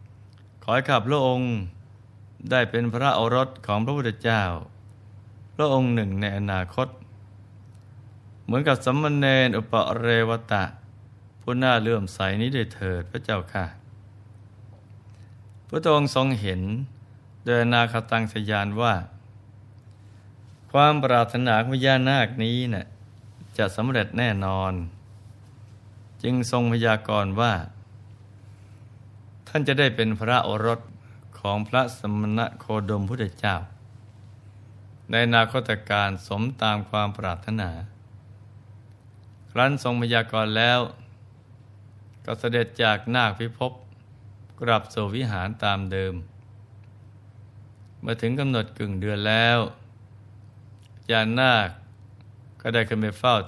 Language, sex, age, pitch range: Thai, male, 20-39, 105-115 Hz